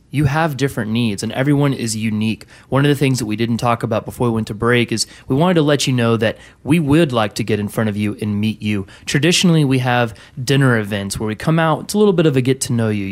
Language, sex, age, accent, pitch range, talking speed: English, male, 30-49, American, 115-145 Hz, 265 wpm